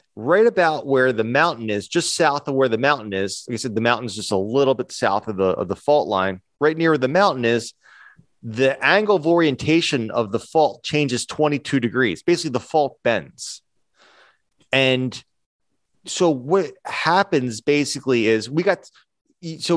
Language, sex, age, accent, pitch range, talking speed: English, male, 30-49, American, 120-160 Hz, 180 wpm